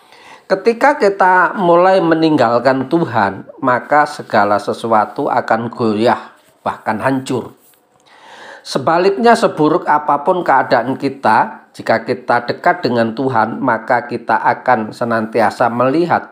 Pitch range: 110-145 Hz